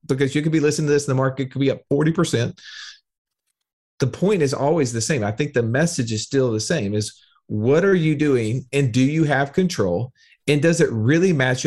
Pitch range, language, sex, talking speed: 125-165 Hz, English, male, 220 wpm